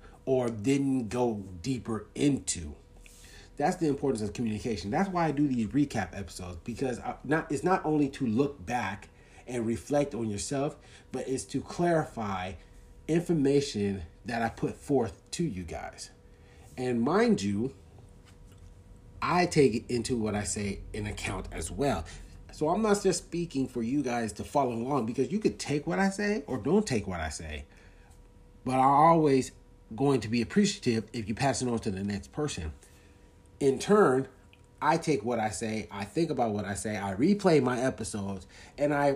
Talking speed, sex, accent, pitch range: 175 wpm, male, American, 100-145 Hz